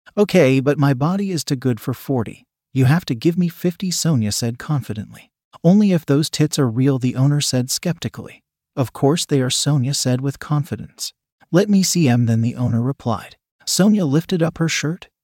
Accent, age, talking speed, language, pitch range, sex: American, 40-59, 195 wpm, English, 125-155 Hz, male